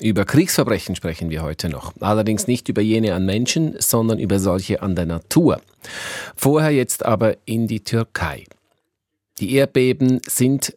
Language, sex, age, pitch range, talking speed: German, male, 40-59, 95-115 Hz, 150 wpm